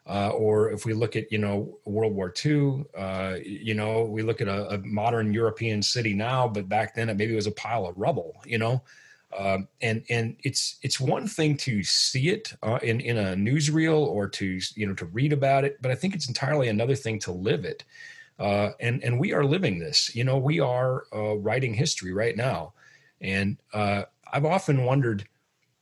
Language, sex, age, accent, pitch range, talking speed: English, male, 30-49, American, 105-140 Hz, 205 wpm